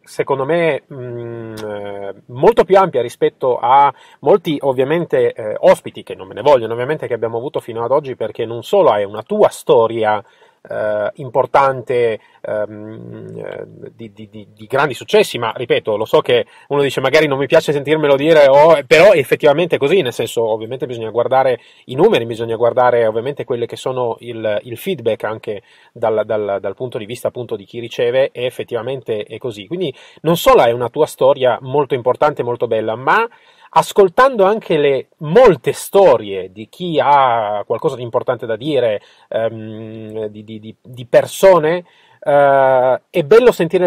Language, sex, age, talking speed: Italian, male, 30-49, 170 wpm